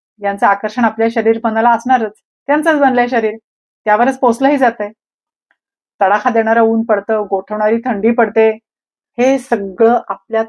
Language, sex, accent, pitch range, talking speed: Marathi, female, native, 210-250 Hz, 125 wpm